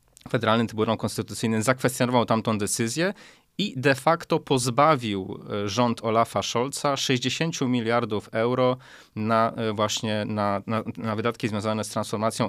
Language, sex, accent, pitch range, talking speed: Polish, male, native, 110-130 Hz, 120 wpm